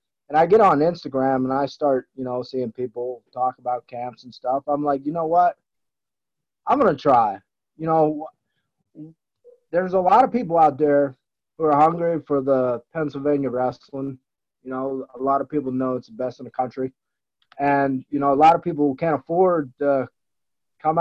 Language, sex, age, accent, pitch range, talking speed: English, male, 30-49, American, 135-170 Hz, 190 wpm